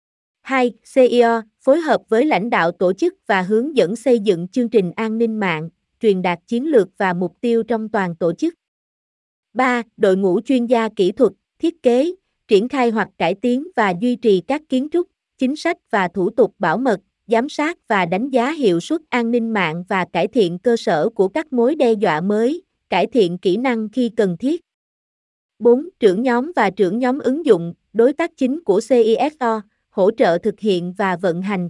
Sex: female